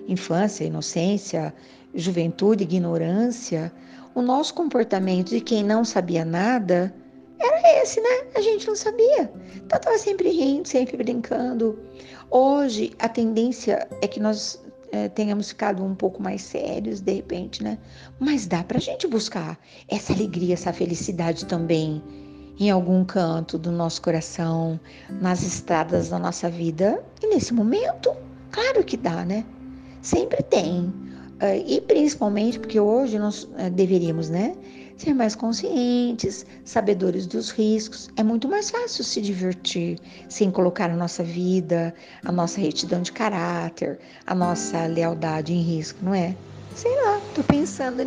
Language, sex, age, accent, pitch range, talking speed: Portuguese, female, 50-69, Brazilian, 170-230 Hz, 140 wpm